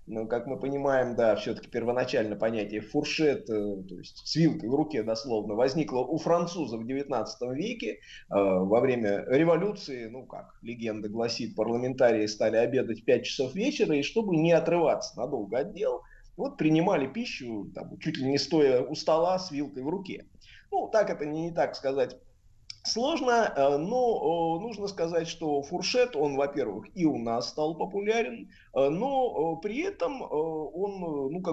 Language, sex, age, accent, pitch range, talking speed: Russian, male, 20-39, native, 115-165 Hz, 155 wpm